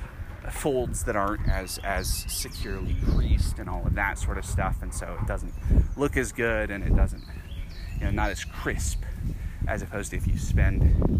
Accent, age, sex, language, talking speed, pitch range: American, 30-49, male, English, 190 wpm, 80-100 Hz